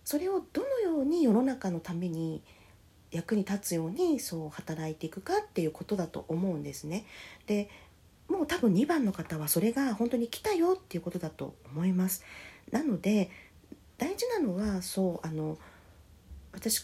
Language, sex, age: Japanese, female, 40-59